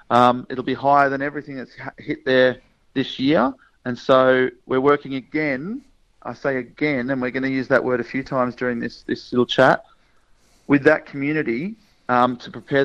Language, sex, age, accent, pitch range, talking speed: English, male, 40-59, Australian, 120-140 Hz, 185 wpm